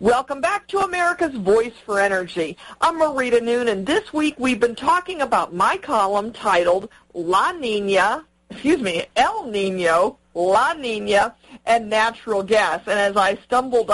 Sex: female